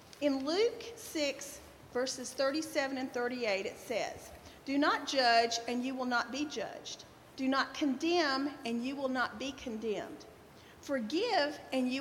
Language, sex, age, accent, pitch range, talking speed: English, female, 40-59, American, 260-320 Hz, 150 wpm